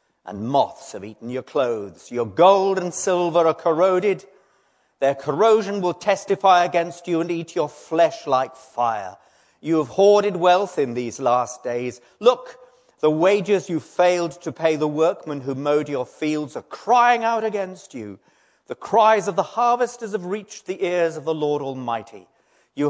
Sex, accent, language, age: male, British, English, 40-59